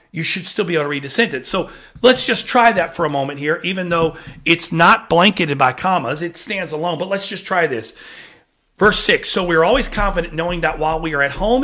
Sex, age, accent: male, 40-59, American